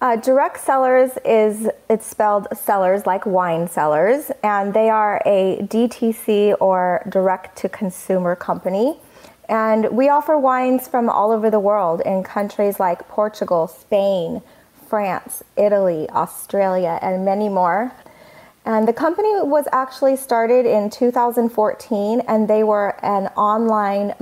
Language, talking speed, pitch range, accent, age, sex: English, 130 wpm, 195-240 Hz, American, 30-49, female